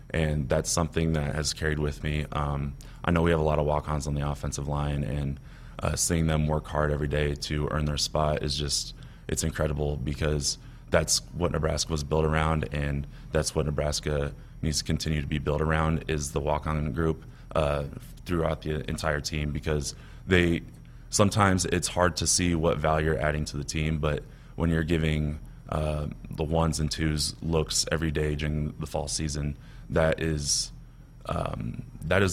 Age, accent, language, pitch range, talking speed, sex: 20-39, American, English, 75-80 Hz, 185 wpm, male